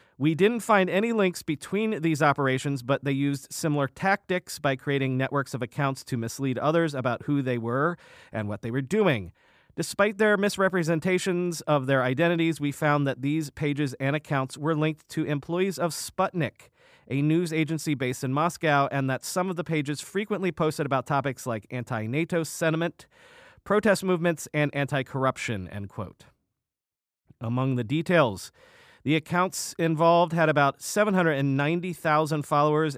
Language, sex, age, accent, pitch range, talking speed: English, male, 40-59, American, 125-170 Hz, 155 wpm